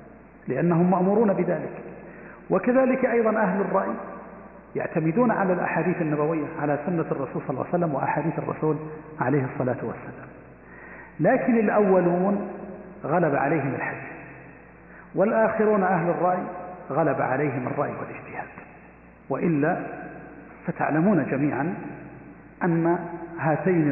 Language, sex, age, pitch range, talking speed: Arabic, male, 40-59, 160-205 Hz, 100 wpm